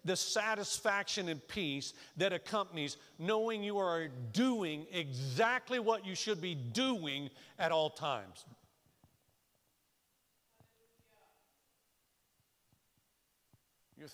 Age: 50-69